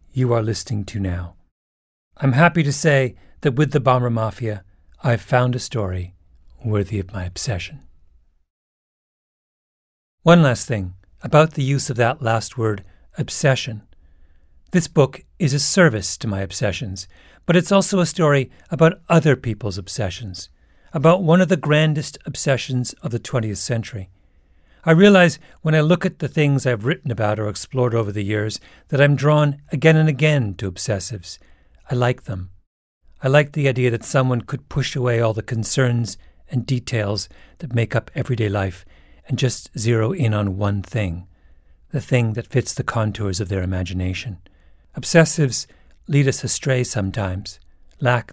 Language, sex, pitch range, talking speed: English, male, 95-140 Hz, 160 wpm